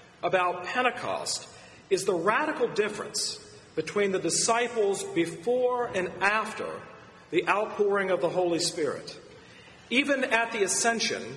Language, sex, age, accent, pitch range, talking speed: English, male, 40-59, American, 180-230 Hz, 115 wpm